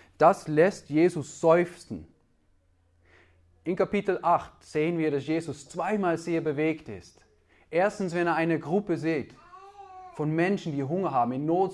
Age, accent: 20-39, German